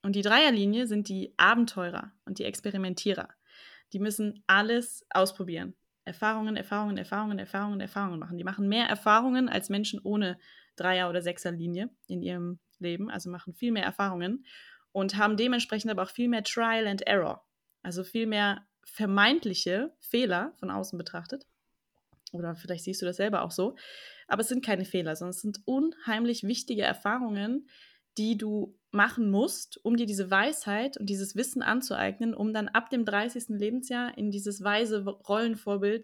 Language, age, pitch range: German, 20-39, 195-230 Hz